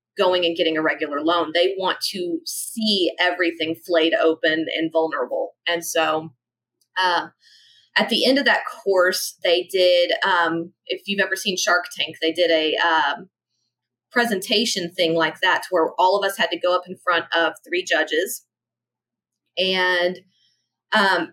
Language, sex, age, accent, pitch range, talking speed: English, female, 30-49, American, 165-200 Hz, 160 wpm